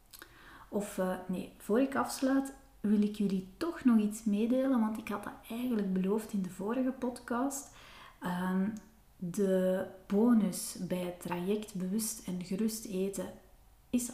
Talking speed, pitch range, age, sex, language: 145 wpm, 185-230 Hz, 30-49, female, Dutch